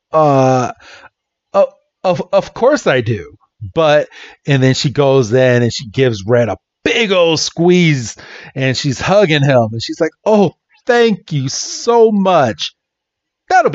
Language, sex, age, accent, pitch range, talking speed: English, male, 40-59, American, 120-170 Hz, 150 wpm